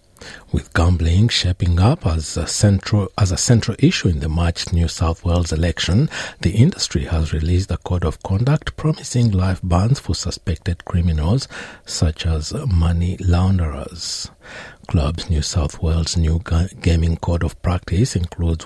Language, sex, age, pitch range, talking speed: English, male, 60-79, 80-100 Hz, 150 wpm